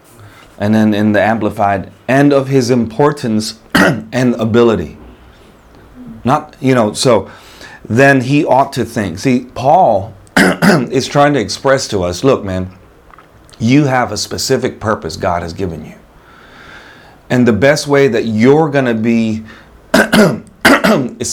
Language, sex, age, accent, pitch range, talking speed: English, male, 30-49, American, 100-125 Hz, 140 wpm